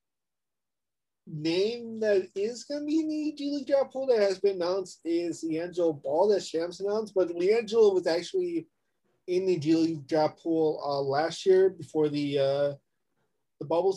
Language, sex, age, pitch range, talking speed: English, male, 30-49, 145-185 Hz, 170 wpm